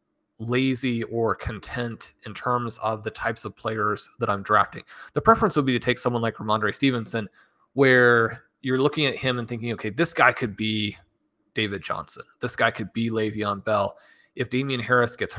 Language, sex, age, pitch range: English, male, 30-49, 105-125 Hz